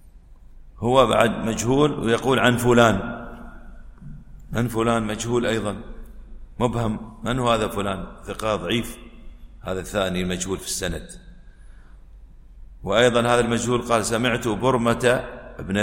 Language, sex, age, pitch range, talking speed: Arabic, male, 50-69, 95-120 Hz, 110 wpm